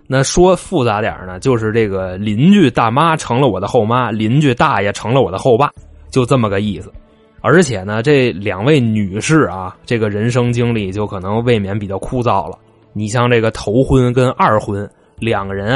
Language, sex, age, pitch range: Chinese, male, 20-39, 105-140 Hz